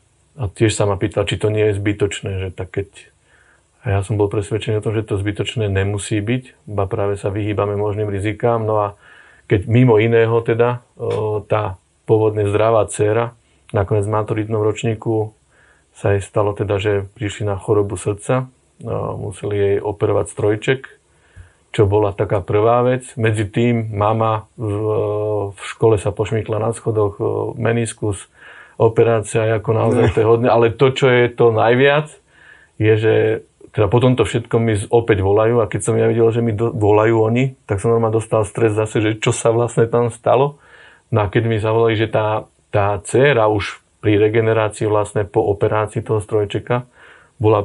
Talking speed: 170 wpm